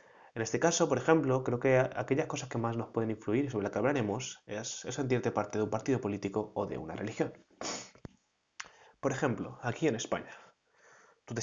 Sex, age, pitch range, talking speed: male, 20-39, 105-130 Hz, 200 wpm